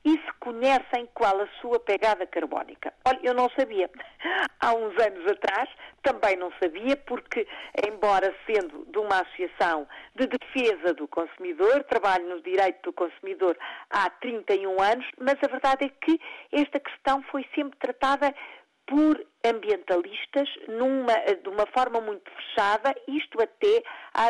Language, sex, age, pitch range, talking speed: Portuguese, female, 50-69, 205-300 Hz, 145 wpm